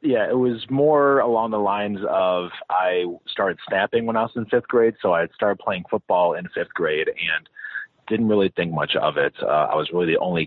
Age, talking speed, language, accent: 30-49, 220 wpm, English, American